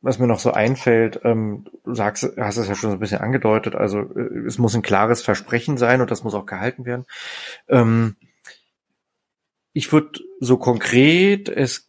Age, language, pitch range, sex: 30-49, German, 105-130 Hz, male